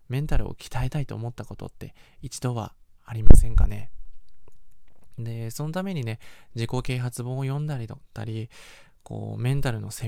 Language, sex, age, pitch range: Japanese, male, 20-39, 110-135 Hz